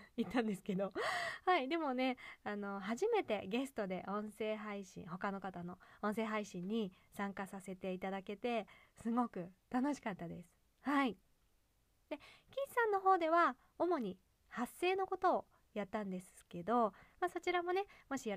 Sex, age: female, 20-39